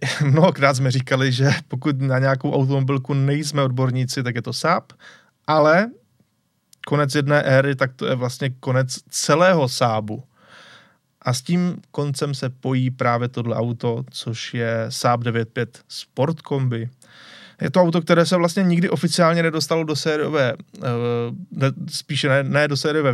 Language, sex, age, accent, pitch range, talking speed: Czech, male, 20-39, native, 130-175 Hz, 145 wpm